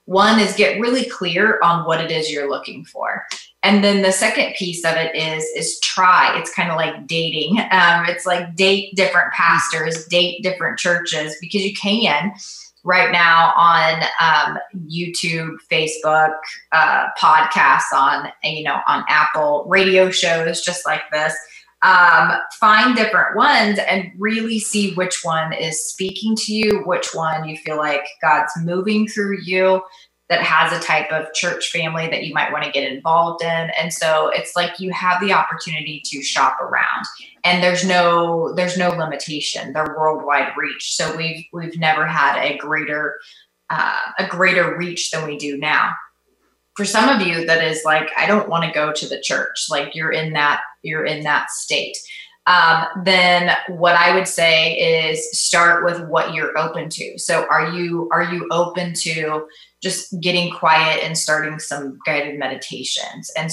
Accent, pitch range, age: American, 155-185 Hz, 20-39